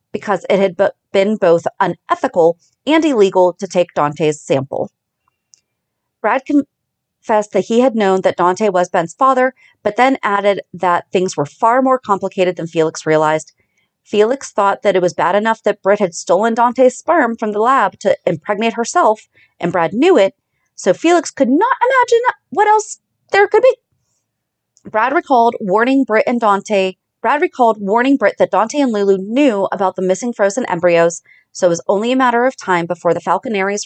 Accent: American